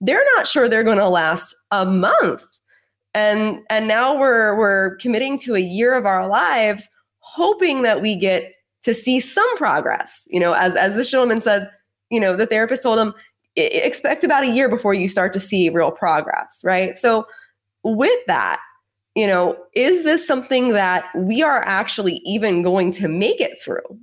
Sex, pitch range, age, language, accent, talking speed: female, 175-230 Hz, 20-39, English, American, 180 wpm